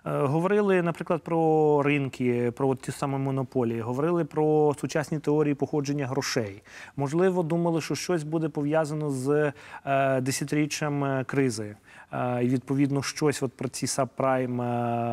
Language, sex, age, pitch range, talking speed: Ukrainian, male, 30-49, 130-160 Hz, 120 wpm